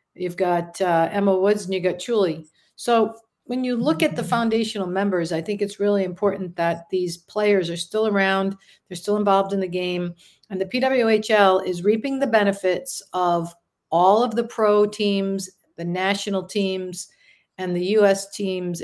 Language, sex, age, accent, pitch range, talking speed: English, female, 50-69, American, 175-225 Hz, 170 wpm